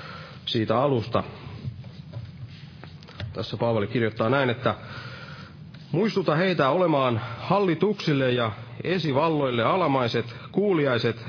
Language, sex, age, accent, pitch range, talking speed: Finnish, male, 30-49, native, 120-165 Hz, 80 wpm